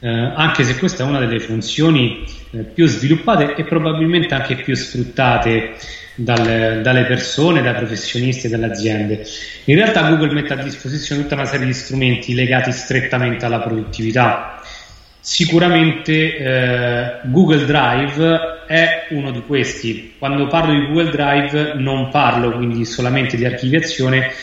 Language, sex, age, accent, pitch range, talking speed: Italian, male, 30-49, native, 120-155 Hz, 140 wpm